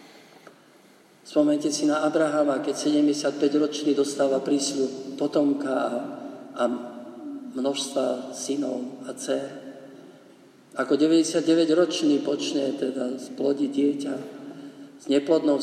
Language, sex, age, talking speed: Slovak, male, 50-69, 85 wpm